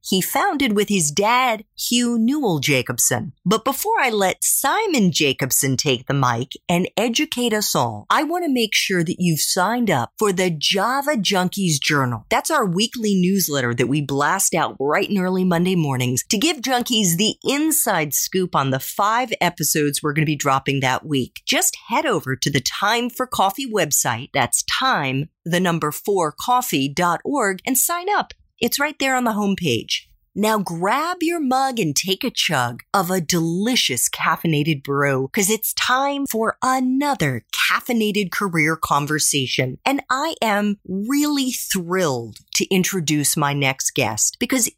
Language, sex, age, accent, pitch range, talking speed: English, female, 40-59, American, 145-245 Hz, 160 wpm